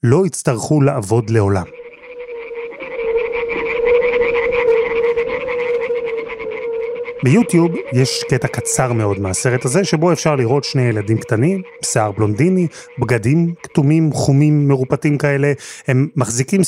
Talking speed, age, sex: 95 wpm, 30-49, male